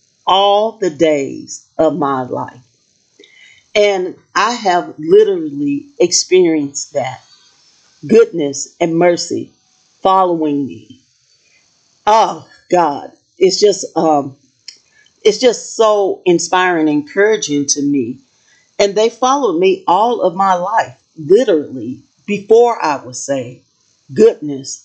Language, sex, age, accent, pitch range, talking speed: English, female, 50-69, American, 155-245 Hz, 105 wpm